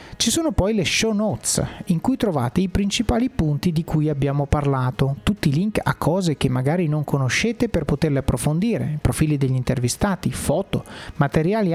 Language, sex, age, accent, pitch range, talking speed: Italian, male, 30-49, native, 140-205 Hz, 170 wpm